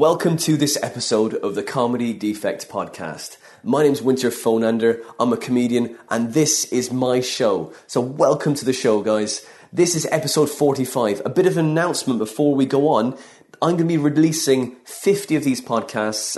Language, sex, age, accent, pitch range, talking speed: English, male, 30-49, British, 115-140 Hz, 180 wpm